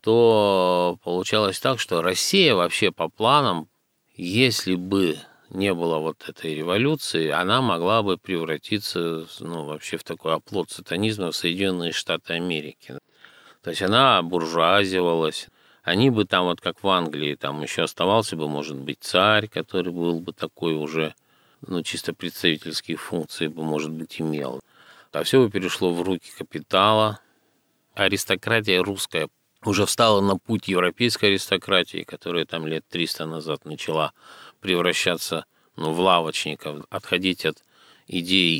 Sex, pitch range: male, 80-100 Hz